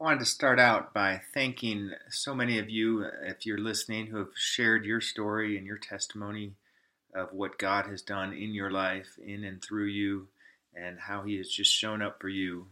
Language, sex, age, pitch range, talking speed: English, male, 30-49, 95-105 Hz, 205 wpm